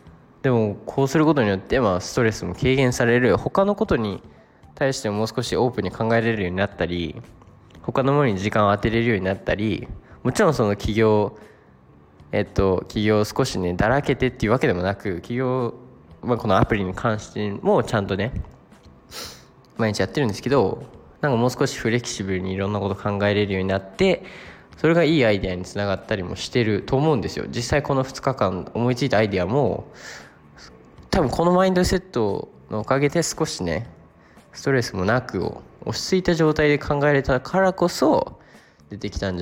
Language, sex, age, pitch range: Japanese, male, 20-39, 95-125 Hz